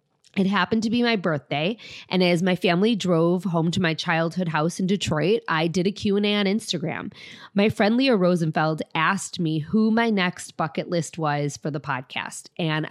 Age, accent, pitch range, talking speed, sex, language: 20-39, American, 155-195 Hz, 195 wpm, female, English